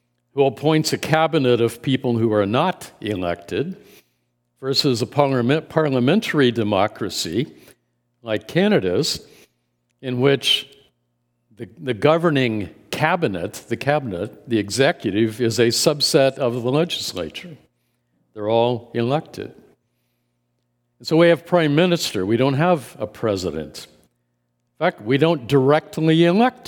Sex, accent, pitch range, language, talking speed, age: male, American, 105-140 Hz, English, 115 wpm, 60-79